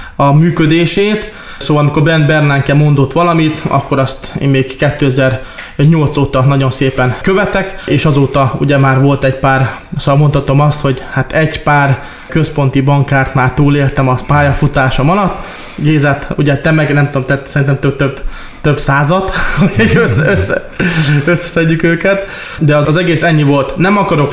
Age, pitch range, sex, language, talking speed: 20-39, 135-160 Hz, male, Hungarian, 150 wpm